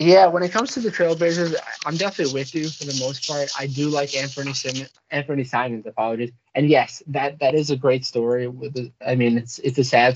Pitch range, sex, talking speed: 125-150 Hz, male, 230 wpm